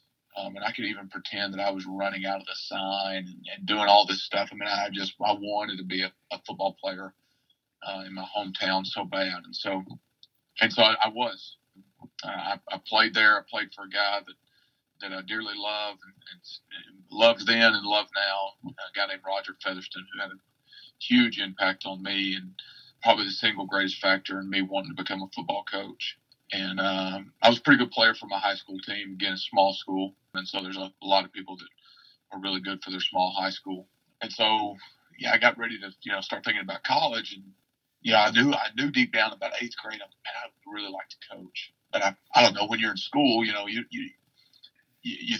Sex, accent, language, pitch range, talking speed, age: male, American, English, 95-110 Hz, 225 wpm, 40-59